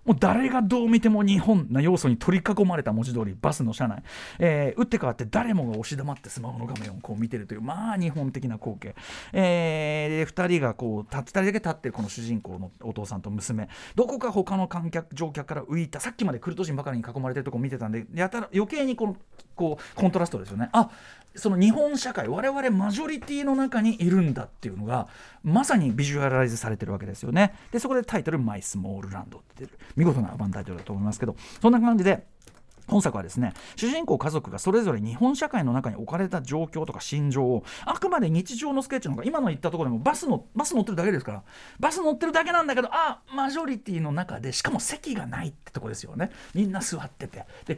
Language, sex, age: Japanese, male, 40-59